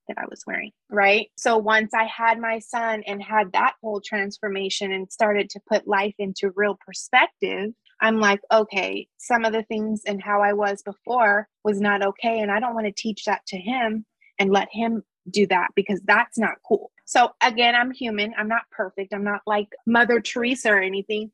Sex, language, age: female, English, 20-39